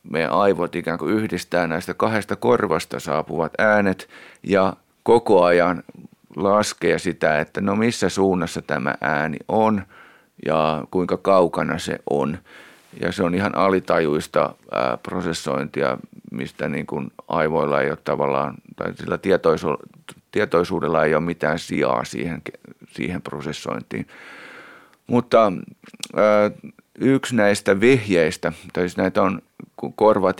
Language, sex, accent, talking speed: Finnish, male, native, 120 wpm